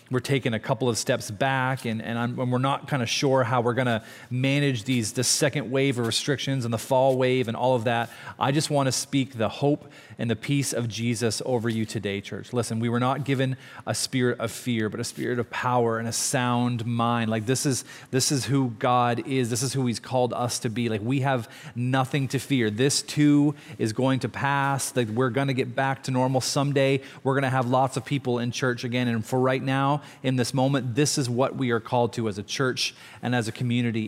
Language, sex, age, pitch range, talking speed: English, male, 30-49, 120-140 Hz, 235 wpm